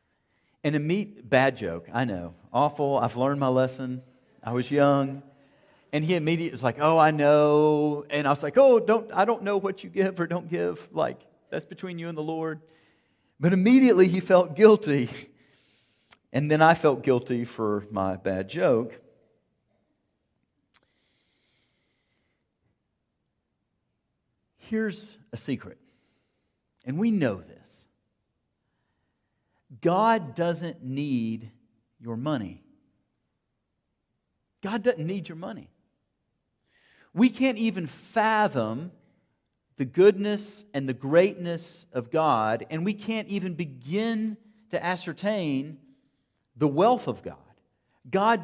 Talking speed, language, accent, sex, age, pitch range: 120 wpm, English, American, male, 50-69, 125-190 Hz